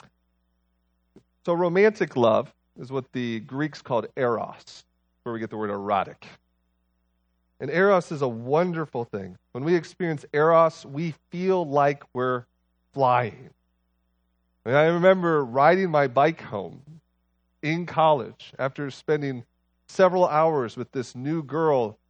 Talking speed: 130 wpm